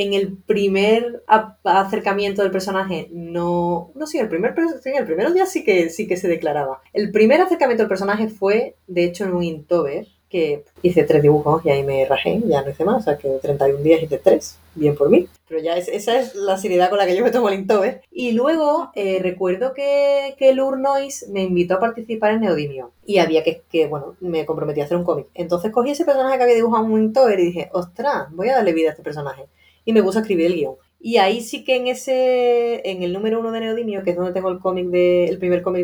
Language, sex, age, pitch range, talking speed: Spanish, female, 30-49, 170-225 Hz, 230 wpm